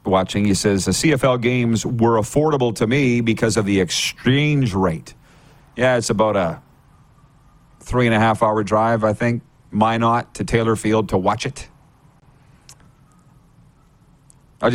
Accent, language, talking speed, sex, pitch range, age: American, English, 145 wpm, male, 105-135 Hz, 40-59